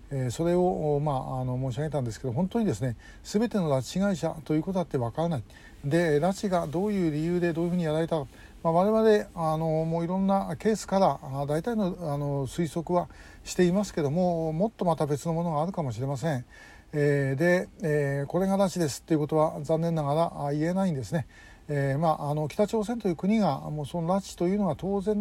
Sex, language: male, Japanese